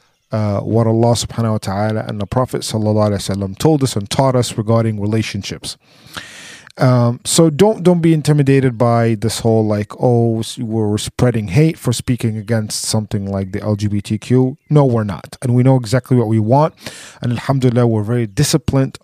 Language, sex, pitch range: English, male, 110-140 Hz